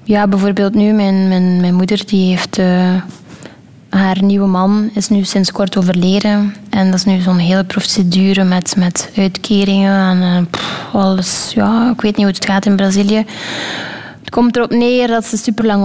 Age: 20-39